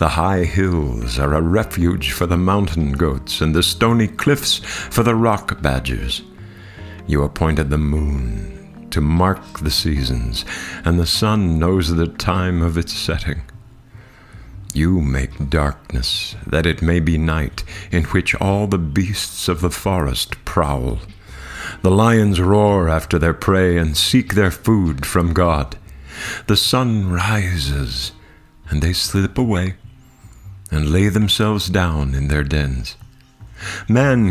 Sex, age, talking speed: male, 60-79, 140 wpm